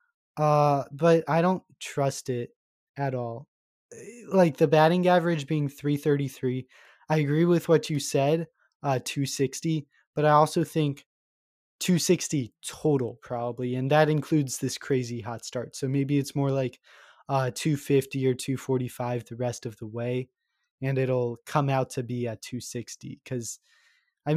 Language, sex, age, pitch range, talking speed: English, male, 20-39, 130-165 Hz, 165 wpm